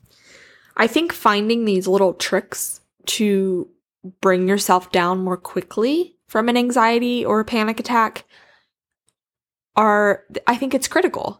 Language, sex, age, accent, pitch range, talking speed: English, female, 10-29, American, 195-245 Hz, 125 wpm